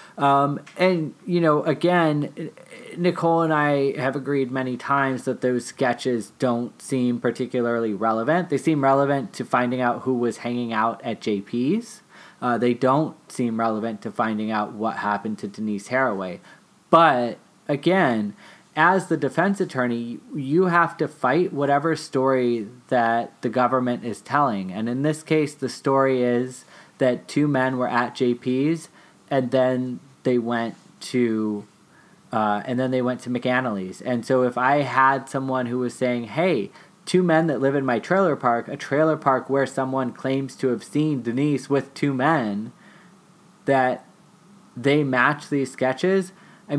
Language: English